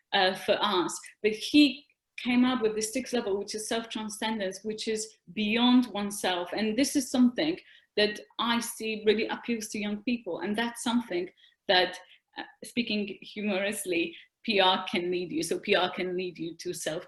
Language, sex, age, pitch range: English, female, 30-49, 200-245 Hz